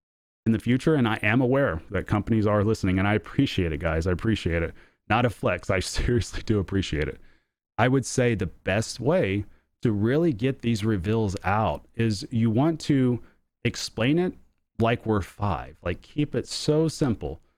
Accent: American